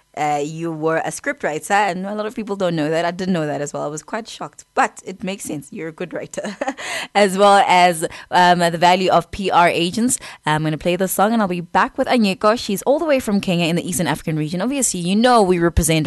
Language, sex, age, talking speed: English, female, 20-39, 255 wpm